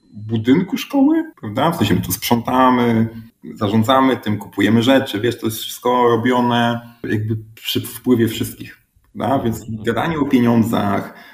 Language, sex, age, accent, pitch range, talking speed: Polish, male, 30-49, native, 110-130 Hz, 140 wpm